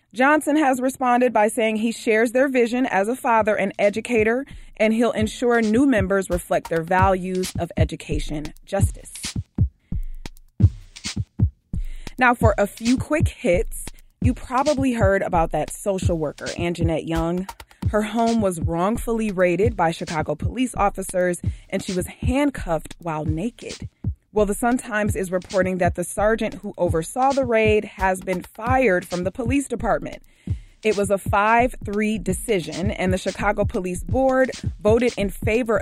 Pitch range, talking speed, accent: 175-235 Hz, 145 wpm, American